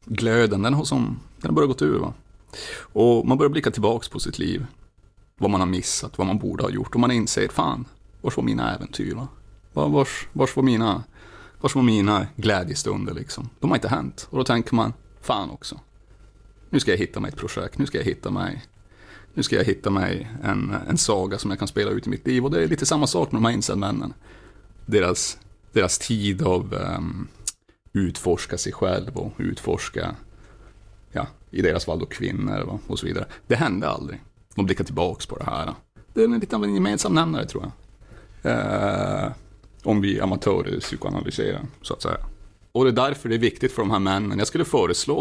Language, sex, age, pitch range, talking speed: Swedish, male, 30-49, 100-130 Hz, 200 wpm